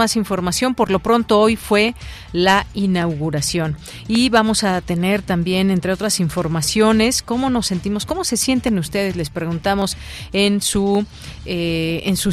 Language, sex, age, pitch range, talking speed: Spanish, female, 40-59, 170-210 Hz, 140 wpm